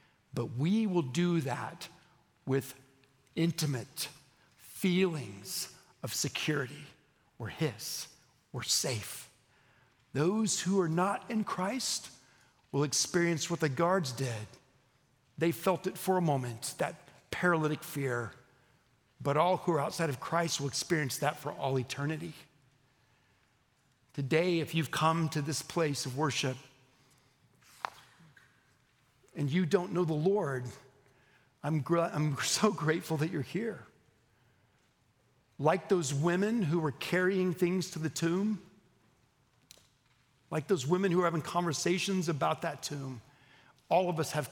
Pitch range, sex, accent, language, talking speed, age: 130-175 Hz, male, American, English, 130 wpm, 60-79